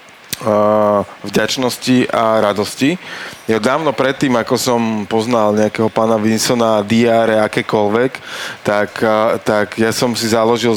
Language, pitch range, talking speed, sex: Slovak, 105-125 Hz, 110 wpm, male